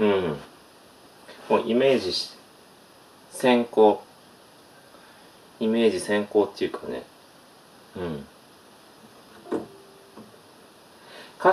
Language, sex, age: Japanese, male, 40-59